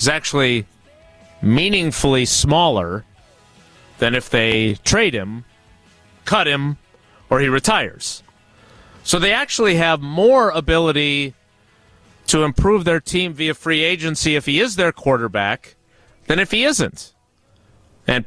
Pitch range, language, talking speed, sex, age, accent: 105-165 Hz, English, 120 wpm, male, 30-49, American